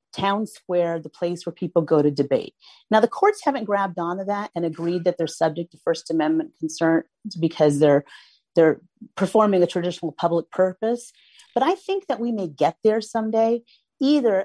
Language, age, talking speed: English, 40-59, 180 wpm